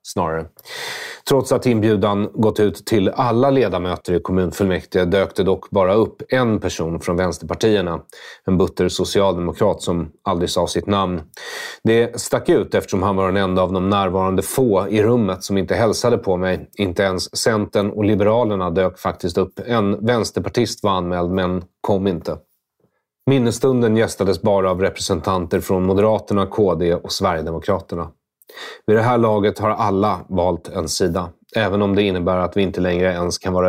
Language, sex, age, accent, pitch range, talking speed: English, male, 30-49, Swedish, 90-105 Hz, 165 wpm